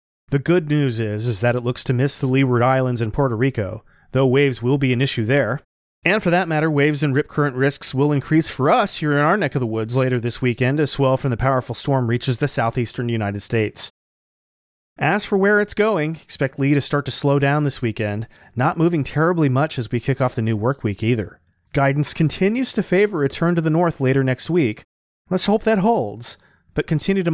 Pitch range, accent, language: 125-155 Hz, American, English